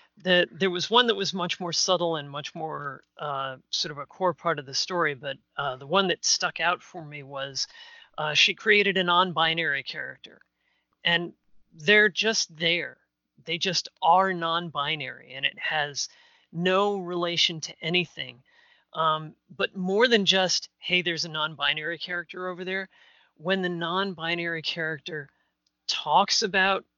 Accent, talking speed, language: American, 155 wpm, English